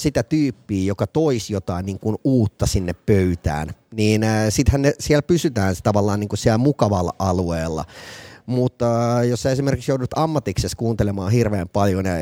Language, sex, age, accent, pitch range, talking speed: Finnish, male, 30-49, native, 105-130 Hz, 145 wpm